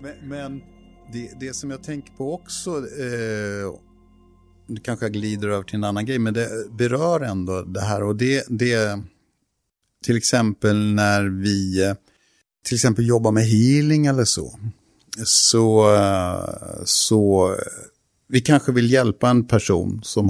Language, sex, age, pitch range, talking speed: Swedish, male, 50-69, 100-120 Hz, 140 wpm